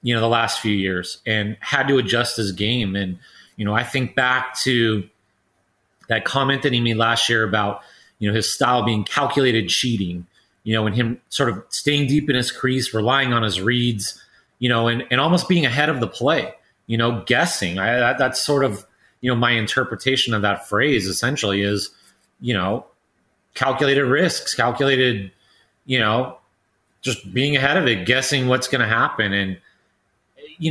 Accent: American